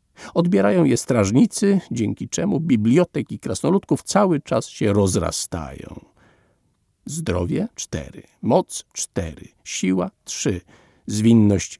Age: 50-69